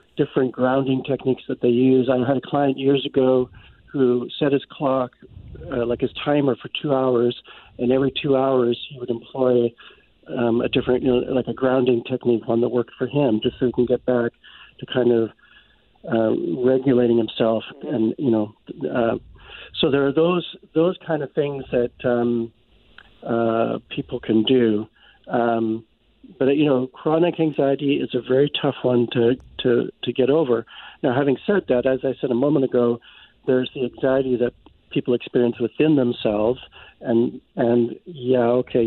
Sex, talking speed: male, 175 wpm